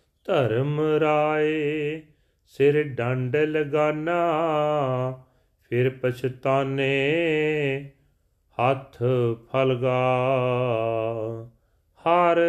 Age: 40-59